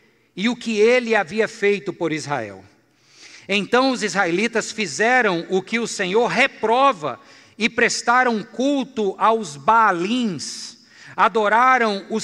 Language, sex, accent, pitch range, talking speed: Portuguese, male, Brazilian, 165-225 Hz, 120 wpm